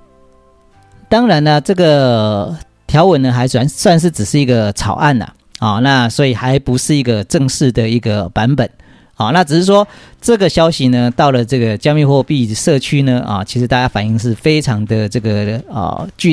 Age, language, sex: 40-59, Chinese, male